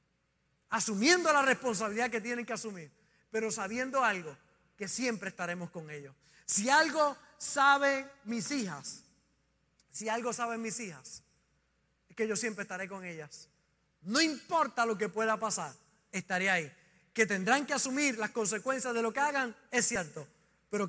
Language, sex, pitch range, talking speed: Spanish, male, 190-255 Hz, 150 wpm